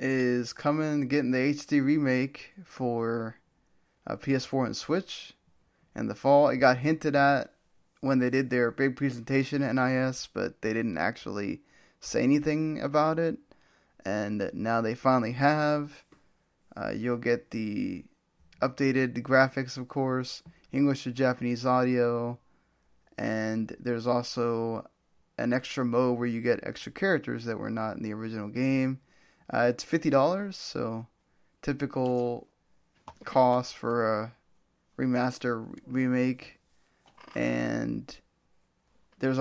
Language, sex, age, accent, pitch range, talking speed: English, male, 20-39, American, 120-145 Hz, 125 wpm